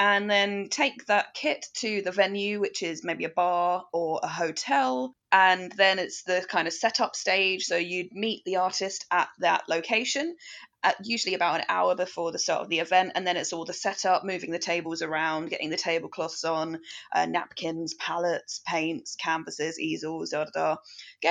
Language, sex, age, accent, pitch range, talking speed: English, female, 20-39, British, 175-205 Hz, 185 wpm